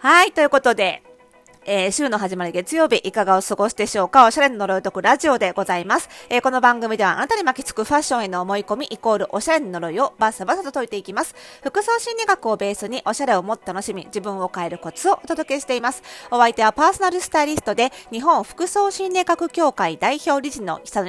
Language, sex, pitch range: Japanese, female, 200-310 Hz